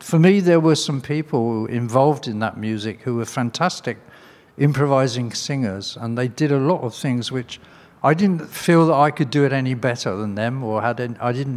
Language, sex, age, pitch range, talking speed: Slovak, male, 60-79, 115-160 Hz, 195 wpm